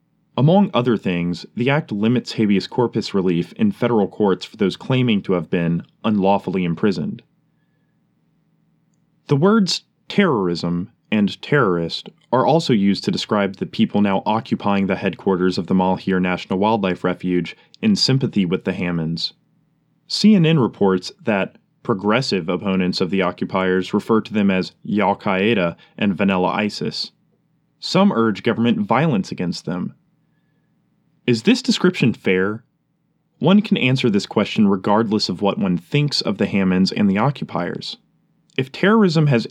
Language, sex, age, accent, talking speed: English, male, 20-39, American, 140 wpm